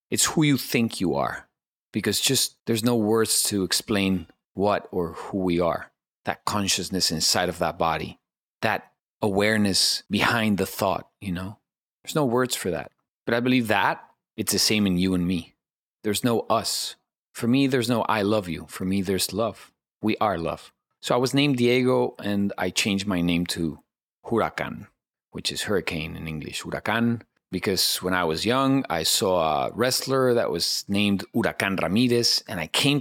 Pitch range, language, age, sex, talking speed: 95-120 Hz, English, 30-49, male, 180 wpm